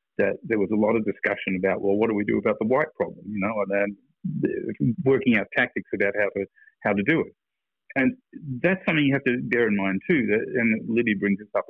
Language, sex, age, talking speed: English, male, 50-69, 240 wpm